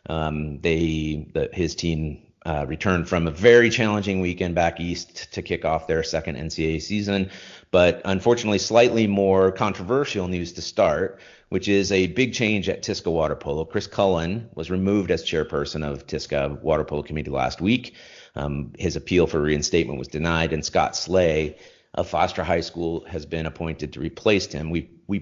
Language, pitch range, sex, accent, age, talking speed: English, 80-95 Hz, male, American, 40-59, 175 wpm